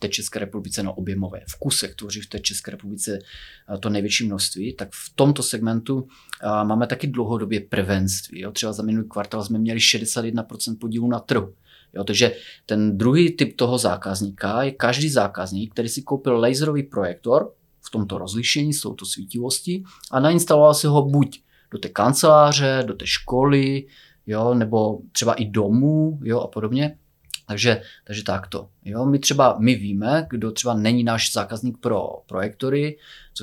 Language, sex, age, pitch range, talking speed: Czech, male, 30-49, 105-125 Hz, 165 wpm